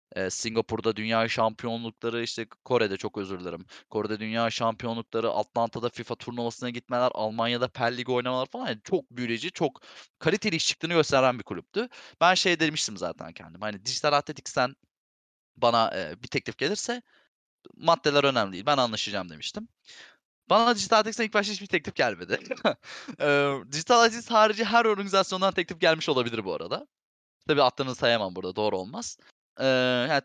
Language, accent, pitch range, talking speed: Turkish, native, 115-185 Hz, 150 wpm